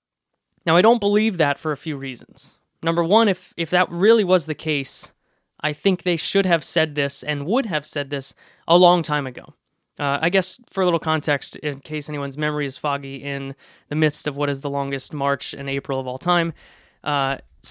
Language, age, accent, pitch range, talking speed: English, 20-39, American, 145-180 Hz, 210 wpm